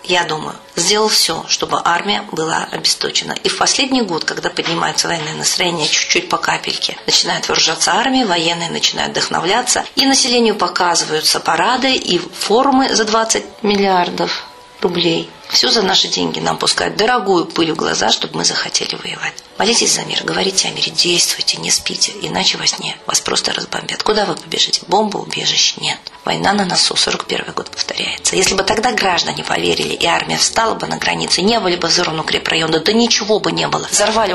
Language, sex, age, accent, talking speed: Russian, female, 40-59, native, 175 wpm